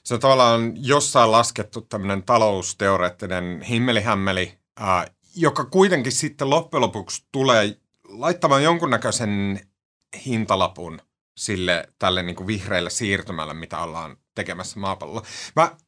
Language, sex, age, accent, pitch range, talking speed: Finnish, male, 30-49, native, 100-135 Hz, 100 wpm